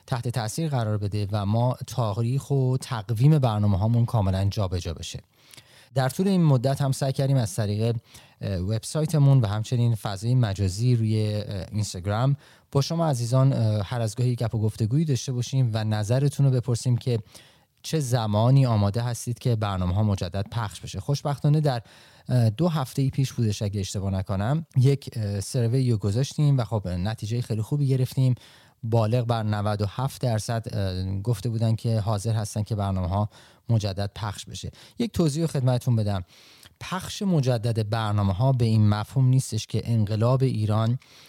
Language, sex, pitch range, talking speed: Persian, male, 105-130 Hz, 150 wpm